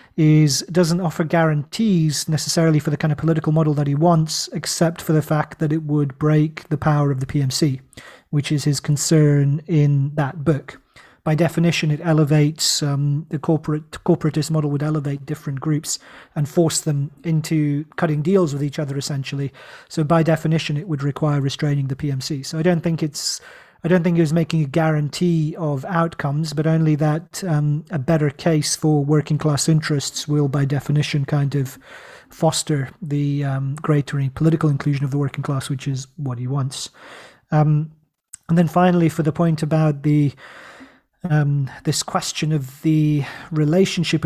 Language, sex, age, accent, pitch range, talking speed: English, male, 40-59, British, 145-160 Hz, 170 wpm